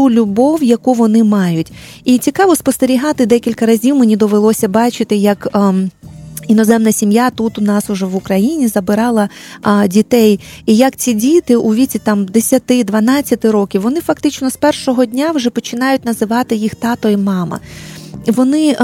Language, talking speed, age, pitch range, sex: Ukrainian, 145 wpm, 30-49, 210-255 Hz, female